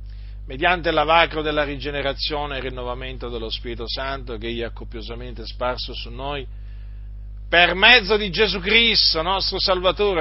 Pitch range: 100-140 Hz